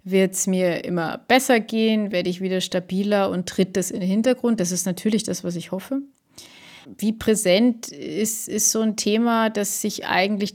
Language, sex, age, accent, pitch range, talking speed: German, female, 30-49, German, 195-230 Hz, 190 wpm